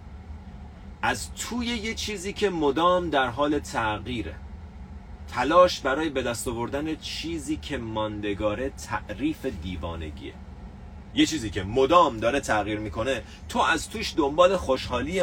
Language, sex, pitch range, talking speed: Persian, male, 85-135 Hz, 120 wpm